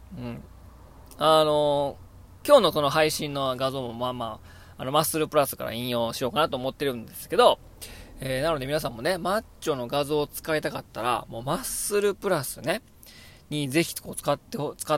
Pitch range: 120-175 Hz